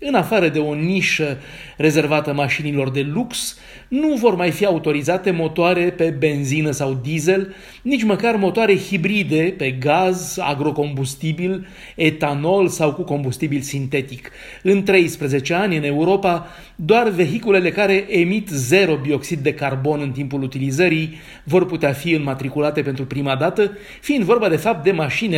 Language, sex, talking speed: Romanian, male, 140 wpm